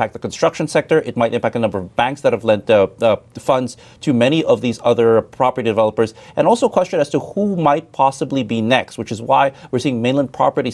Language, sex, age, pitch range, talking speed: English, male, 30-49, 115-140 Hz, 225 wpm